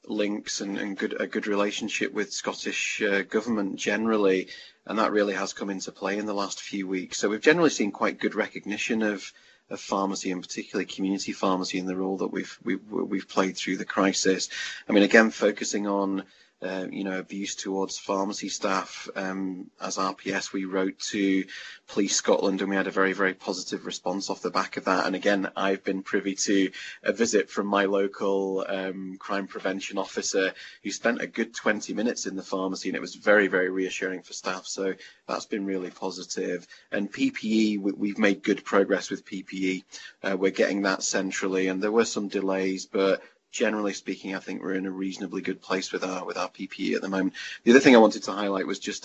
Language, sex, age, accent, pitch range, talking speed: English, male, 30-49, British, 95-100 Hz, 200 wpm